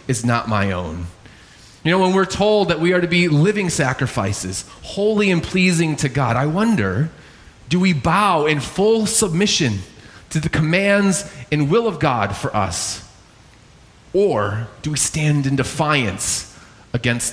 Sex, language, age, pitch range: male, English, 30-49, 115-175 Hz